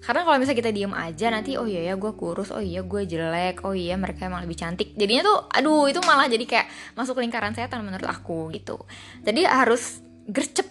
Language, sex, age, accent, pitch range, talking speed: Indonesian, female, 20-39, native, 175-230 Hz, 215 wpm